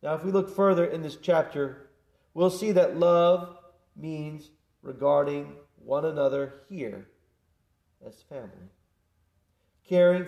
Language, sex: English, male